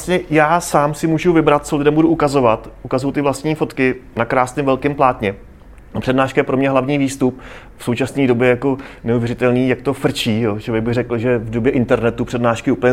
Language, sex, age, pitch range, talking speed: Czech, male, 30-49, 120-145 Hz, 200 wpm